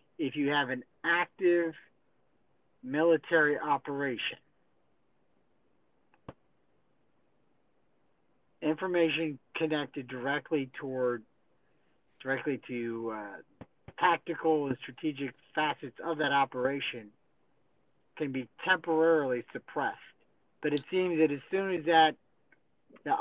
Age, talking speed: 50-69, 90 wpm